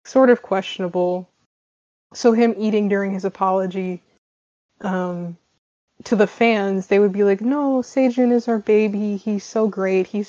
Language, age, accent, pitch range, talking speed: English, 20-39, American, 185-225 Hz, 150 wpm